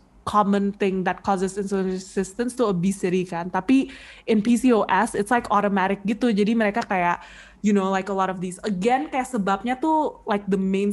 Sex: female